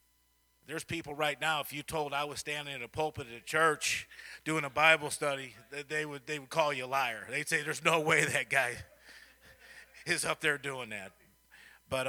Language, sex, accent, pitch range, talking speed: English, male, American, 110-155 Hz, 205 wpm